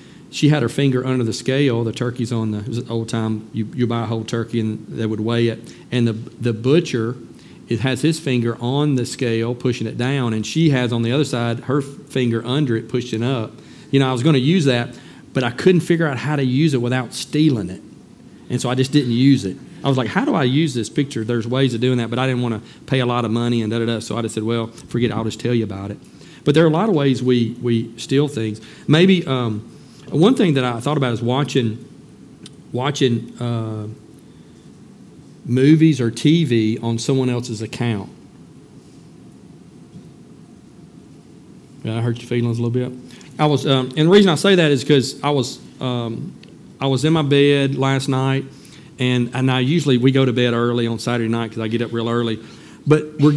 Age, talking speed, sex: 40-59, 225 wpm, male